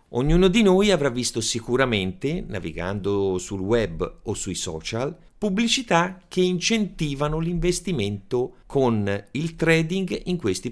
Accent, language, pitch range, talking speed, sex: native, Italian, 95-145 Hz, 120 wpm, male